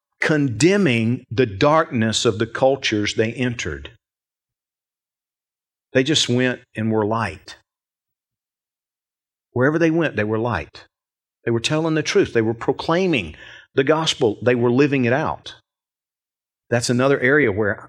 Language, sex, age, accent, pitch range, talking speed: English, male, 50-69, American, 110-150 Hz, 130 wpm